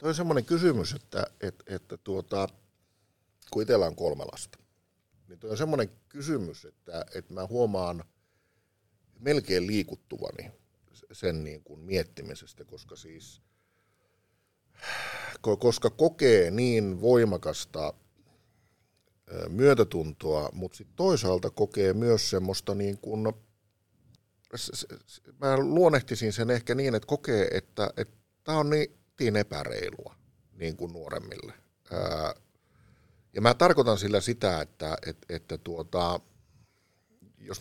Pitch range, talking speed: 90-120 Hz, 110 wpm